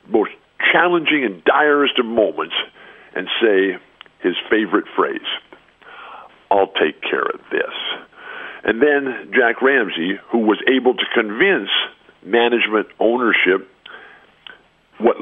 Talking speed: 110 wpm